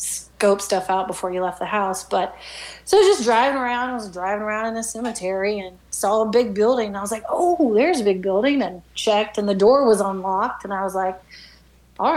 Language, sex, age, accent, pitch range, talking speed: English, female, 30-49, American, 195-235 Hz, 235 wpm